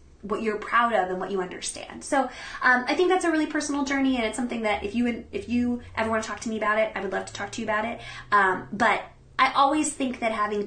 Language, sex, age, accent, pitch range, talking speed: English, female, 20-39, American, 200-270 Hz, 280 wpm